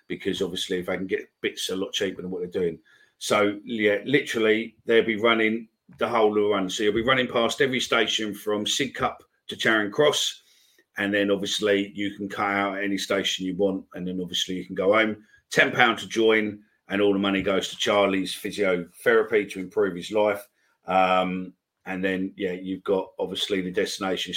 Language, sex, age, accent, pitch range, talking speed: English, male, 40-59, British, 95-110 Hz, 195 wpm